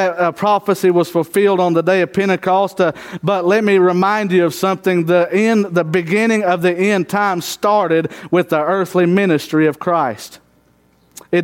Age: 40-59